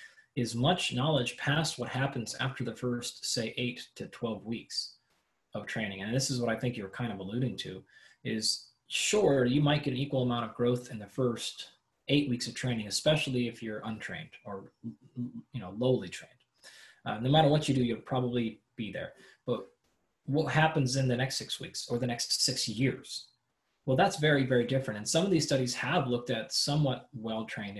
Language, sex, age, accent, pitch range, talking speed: English, male, 20-39, American, 115-135 Hz, 195 wpm